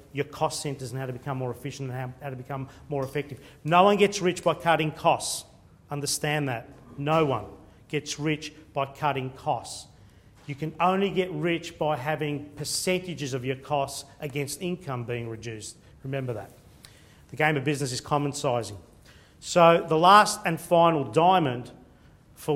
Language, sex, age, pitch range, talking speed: English, male, 40-59, 135-160 Hz, 170 wpm